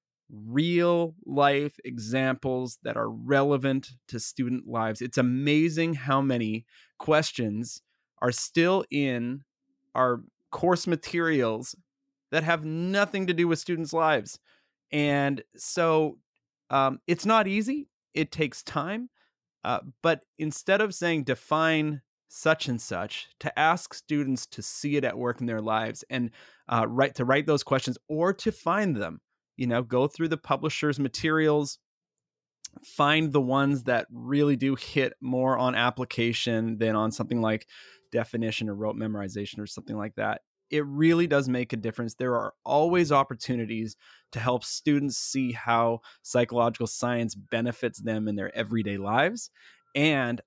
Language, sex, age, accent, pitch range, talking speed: English, male, 30-49, American, 120-155 Hz, 140 wpm